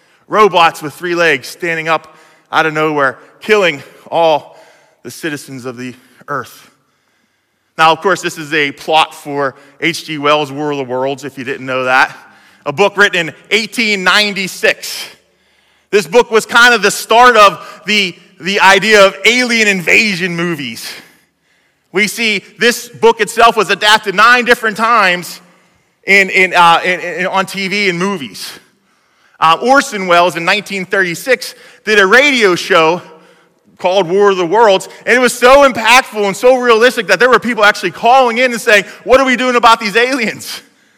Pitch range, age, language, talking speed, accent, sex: 160-225 Hz, 20-39, English, 165 wpm, American, male